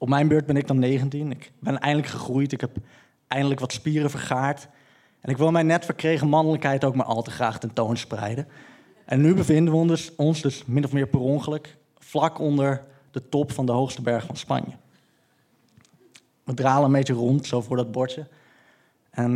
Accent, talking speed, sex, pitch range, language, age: Dutch, 200 wpm, male, 120-145 Hz, Dutch, 20-39